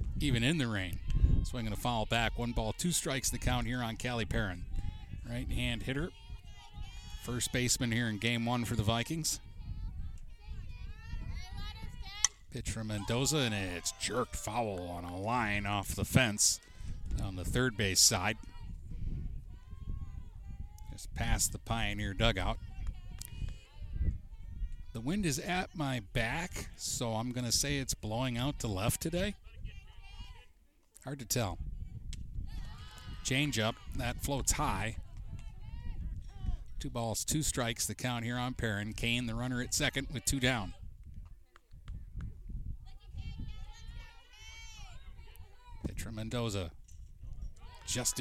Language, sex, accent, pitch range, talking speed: English, male, American, 90-120 Hz, 120 wpm